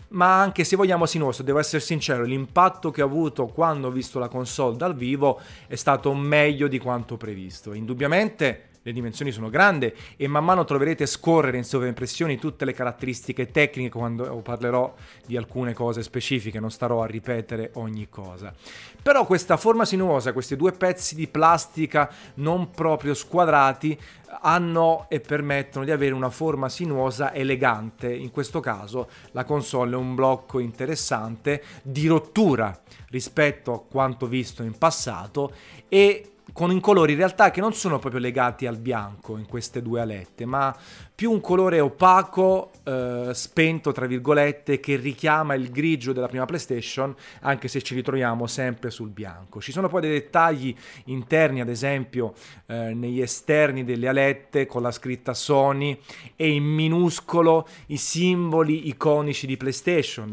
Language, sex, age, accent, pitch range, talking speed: Italian, male, 30-49, native, 125-160 Hz, 155 wpm